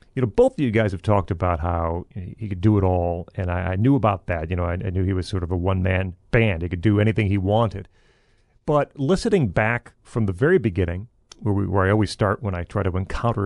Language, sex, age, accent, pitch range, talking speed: English, male, 40-59, American, 95-120 Hz, 250 wpm